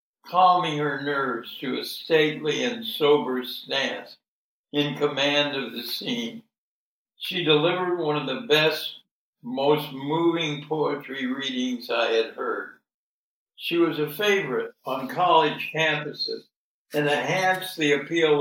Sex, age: male, 60-79